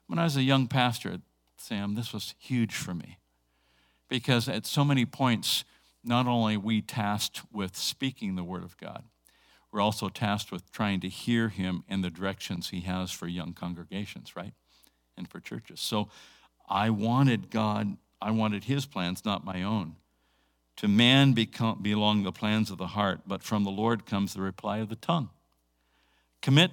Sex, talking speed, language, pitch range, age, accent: male, 175 wpm, English, 85-130 Hz, 50-69, American